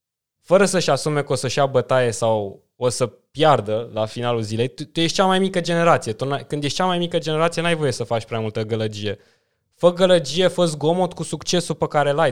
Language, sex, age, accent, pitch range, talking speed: Romanian, male, 20-39, native, 115-155 Hz, 220 wpm